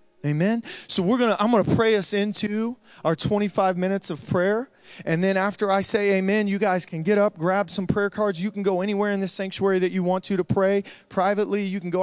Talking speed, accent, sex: 240 wpm, American, male